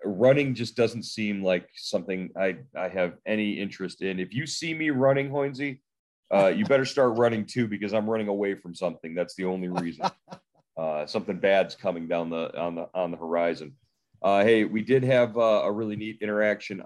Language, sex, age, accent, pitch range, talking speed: English, male, 30-49, American, 90-120 Hz, 195 wpm